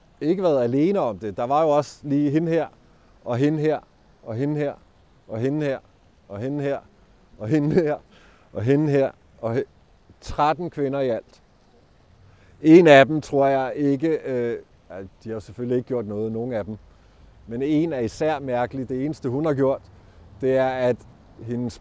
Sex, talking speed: male, 175 wpm